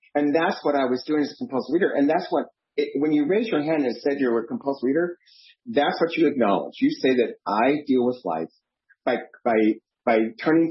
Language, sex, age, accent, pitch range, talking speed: English, male, 40-59, American, 115-195 Hz, 225 wpm